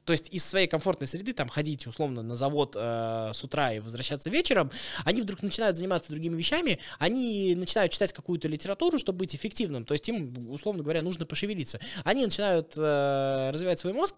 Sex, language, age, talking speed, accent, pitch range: male, Russian, 20-39, 185 wpm, native, 130-195 Hz